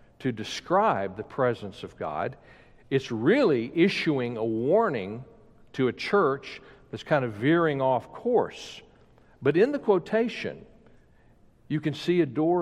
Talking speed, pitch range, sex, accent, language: 140 wpm, 120-165 Hz, male, American, English